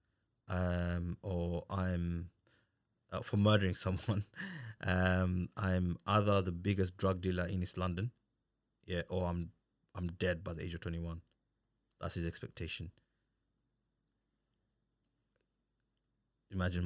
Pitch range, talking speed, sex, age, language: 90-105 Hz, 110 wpm, male, 20-39, English